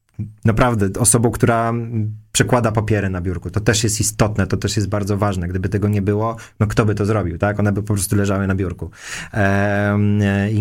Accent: native